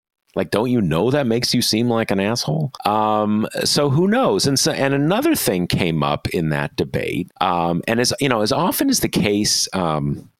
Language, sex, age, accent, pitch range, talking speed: English, male, 40-59, American, 85-120 Hz, 210 wpm